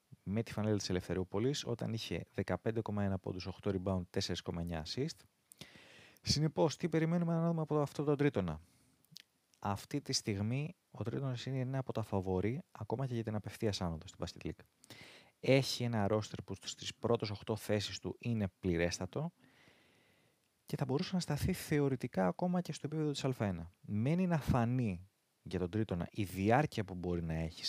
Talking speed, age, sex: 160 wpm, 30-49, male